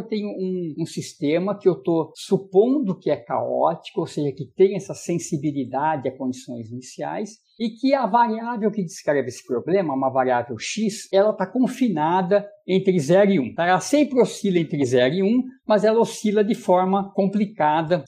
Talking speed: 185 wpm